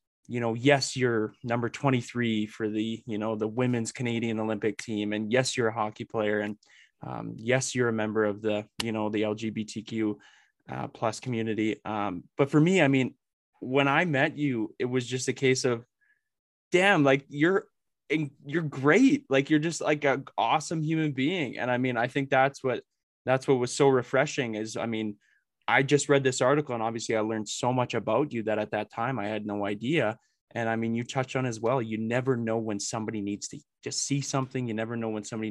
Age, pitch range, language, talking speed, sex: 20-39, 110-135 Hz, English, 210 wpm, male